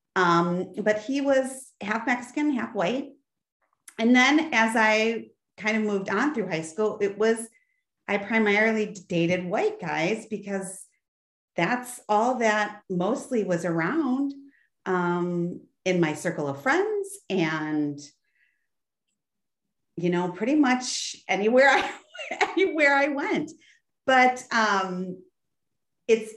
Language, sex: English, female